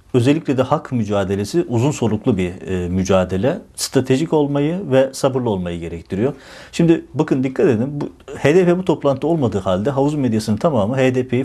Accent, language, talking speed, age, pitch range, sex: native, Turkish, 150 wpm, 50-69, 105-135 Hz, male